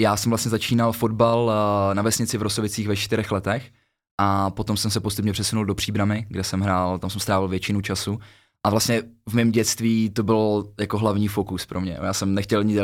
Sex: male